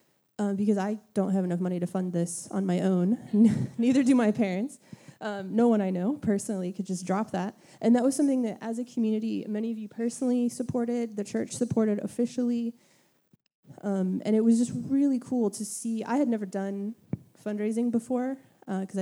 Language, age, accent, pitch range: English, 20-39, American, 200-255 Hz